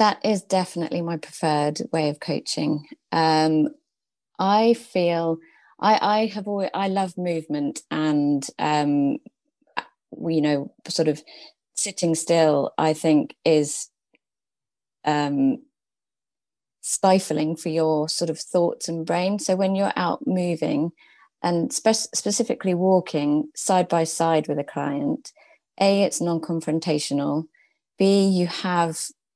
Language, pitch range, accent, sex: English, 155-190 Hz, British, female